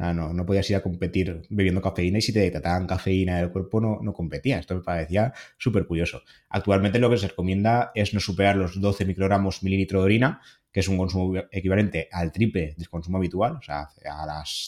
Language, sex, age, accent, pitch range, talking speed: Spanish, male, 20-39, Spanish, 85-100 Hz, 215 wpm